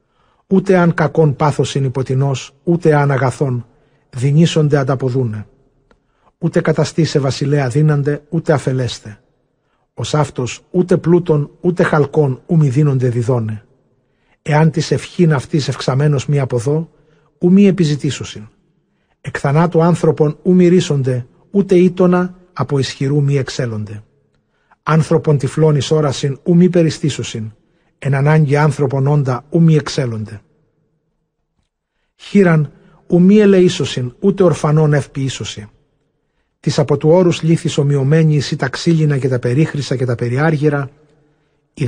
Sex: male